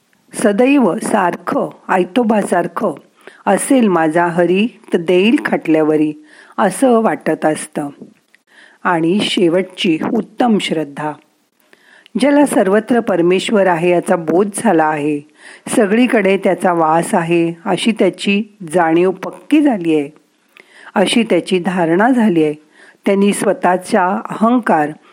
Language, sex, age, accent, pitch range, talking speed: Marathi, female, 40-59, native, 170-230 Hz, 100 wpm